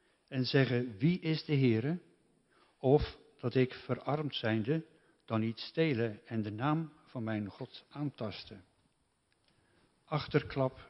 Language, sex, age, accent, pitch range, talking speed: Dutch, male, 50-69, Dutch, 110-135 Hz, 120 wpm